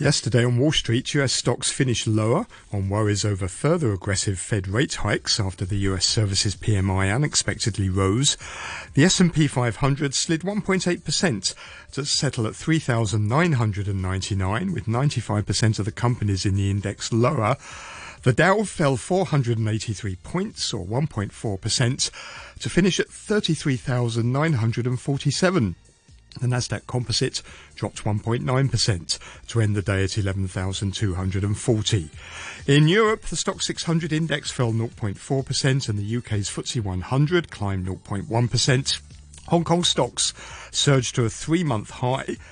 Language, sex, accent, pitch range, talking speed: English, male, British, 105-145 Hz, 120 wpm